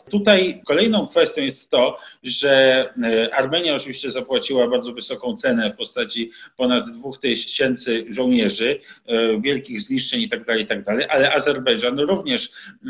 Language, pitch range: Polish, 130-175 Hz